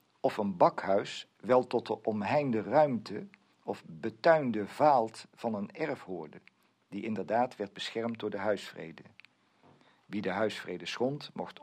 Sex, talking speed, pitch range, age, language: male, 140 wpm, 100-130 Hz, 50-69, Dutch